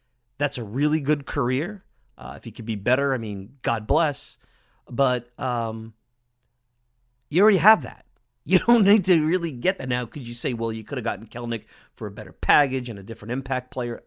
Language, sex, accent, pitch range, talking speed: English, male, American, 110-140 Hz, 200 wpm